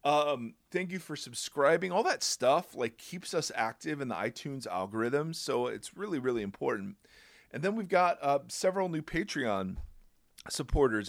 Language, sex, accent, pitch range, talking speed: English, male, American, 105-150 Hz, 160 wpm